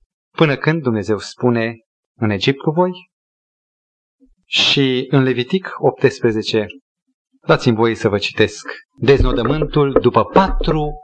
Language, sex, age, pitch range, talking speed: Romanian, male, 30-49, 120-200 Hz, 110 wpm